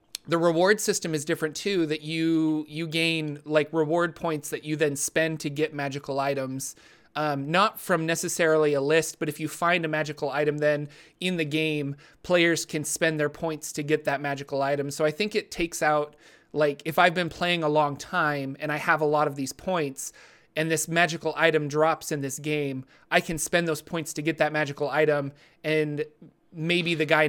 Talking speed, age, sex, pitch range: 200 wpm, 30-49, male, 150-170 Hz